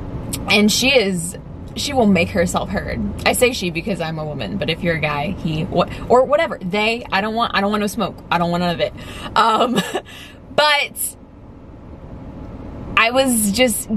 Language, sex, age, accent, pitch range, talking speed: English, female, 20-39, American, 190-265 Hz, 185 wpm